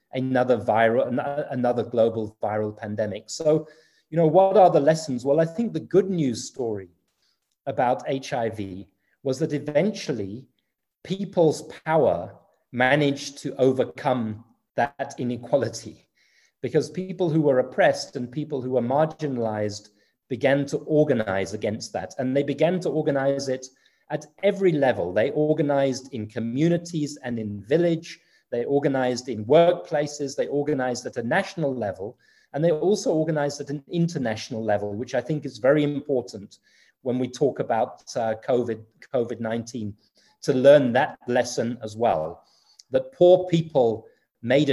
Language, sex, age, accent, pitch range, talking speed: English, male, 30-49, British, 115-150 Hz, 140 wpm